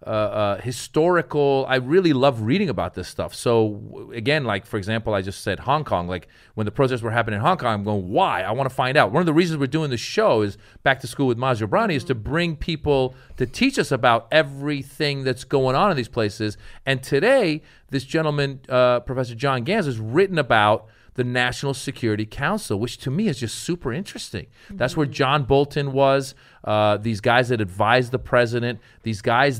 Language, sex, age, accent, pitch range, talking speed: English, male, 40-59, American, 115-150 Hz, 210 wpm